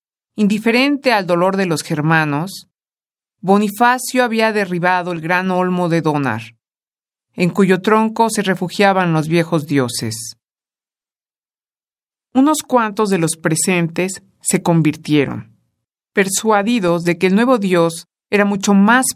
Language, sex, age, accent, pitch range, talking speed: Spanish, male, 50-69, Mexican, 155-200 Hz, 120 wpm